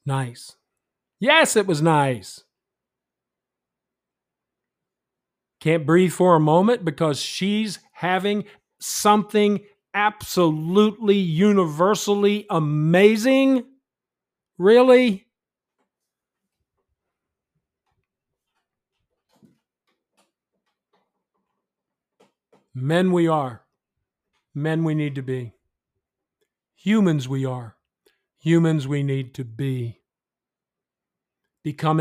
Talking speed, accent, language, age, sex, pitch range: 65 wpm, American, English, 50-69, male, 145-190 Hz